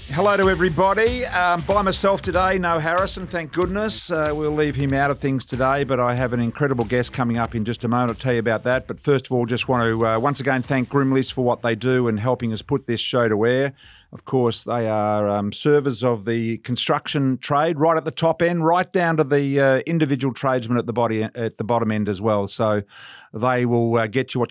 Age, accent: 50-69, Australian